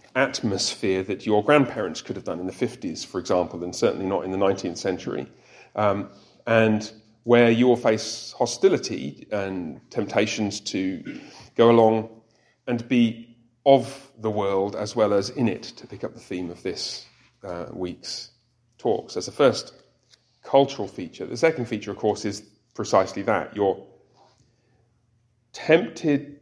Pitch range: 110-125 Hz